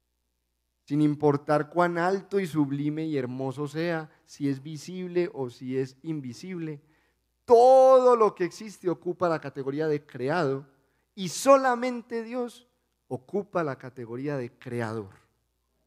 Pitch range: 115-170 Hz